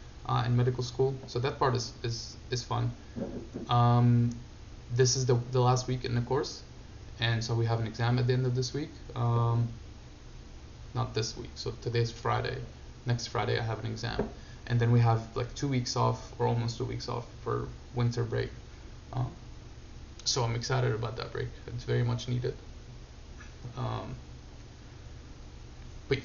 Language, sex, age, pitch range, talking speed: English, male, 20-39, 115-125 Hz, 170 wpm